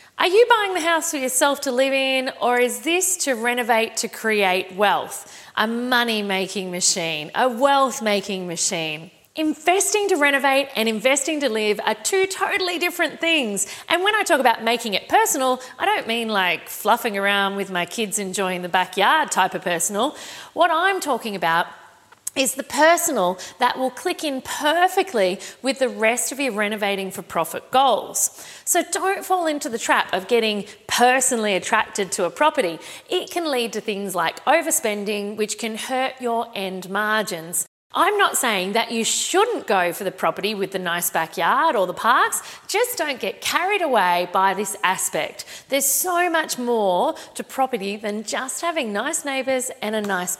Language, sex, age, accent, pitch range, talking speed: English, female, 40-59, Australian, 200-300 Hz, 175 wpm